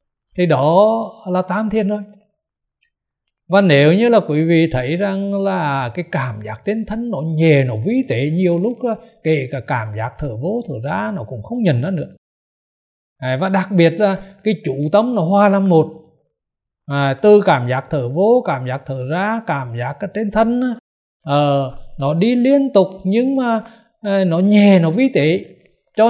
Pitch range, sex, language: 140-210 Hz, male, Vietnamese